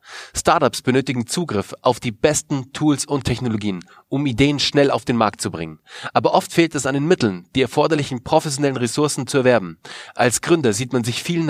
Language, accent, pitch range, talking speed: German, German, 120-145 Hz, 190 wpm